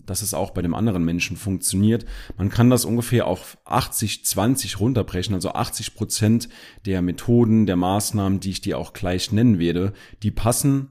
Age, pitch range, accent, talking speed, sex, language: 40-59, 90-110 Hz, German, 165 wpm, male, German